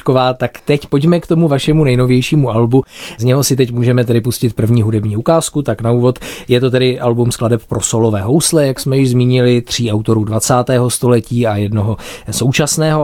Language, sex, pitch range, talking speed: Czech, male, 110-130 Hz, 185 wpm